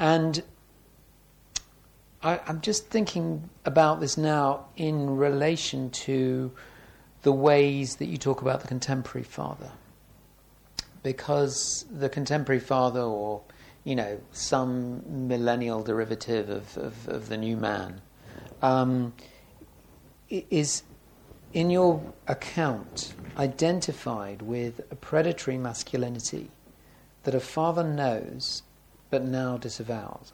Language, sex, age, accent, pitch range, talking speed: English, male, 50-69, British, 120-145 Hz, 100 wpm